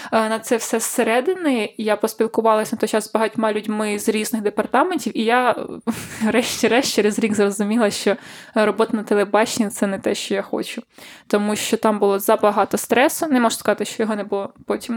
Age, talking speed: 20-39, 185 wpm